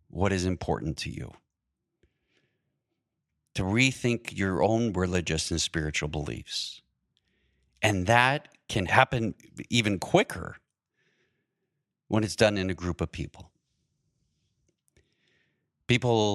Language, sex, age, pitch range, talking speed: English, male, 40-59, 90-115 Hz, 105 wpm